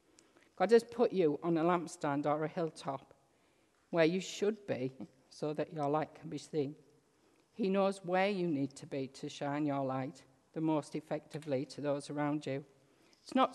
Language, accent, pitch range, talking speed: English, British, 140-170 Hz, 180 wpm